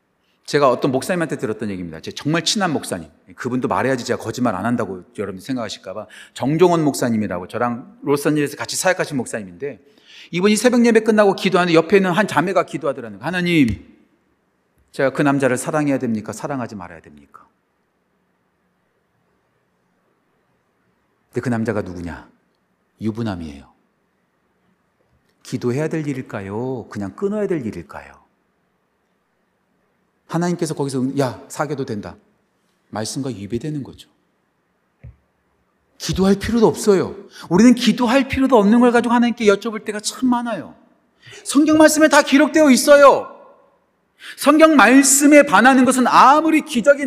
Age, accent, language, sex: 40-59, native, Korean, male